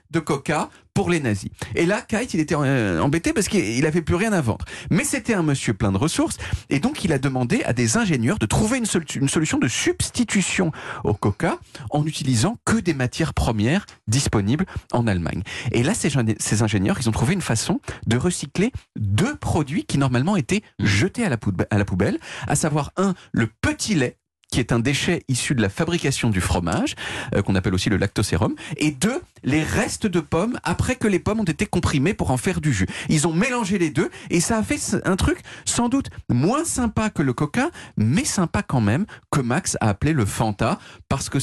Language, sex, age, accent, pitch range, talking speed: French, male, 40-59, French, 115-175 Hz, 205 wpm